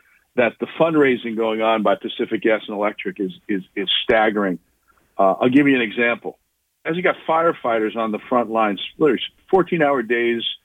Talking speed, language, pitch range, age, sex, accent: 175 wpm, English, 120-190 Hz, 50-69, male, American